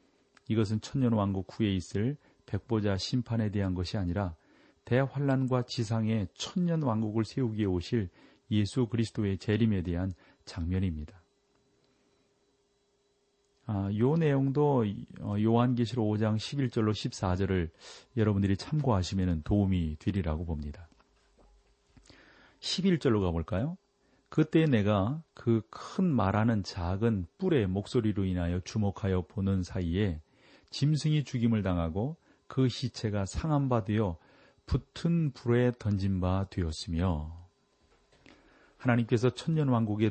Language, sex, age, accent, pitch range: Korean, male, 40-59, native, 95-125 Hz